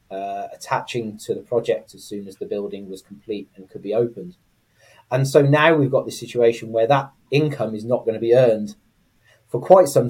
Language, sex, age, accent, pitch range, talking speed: English, male, 30-49, British, 105-135 Hz, 210 wpm